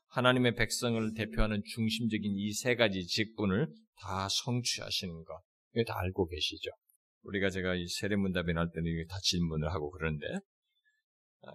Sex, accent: male, native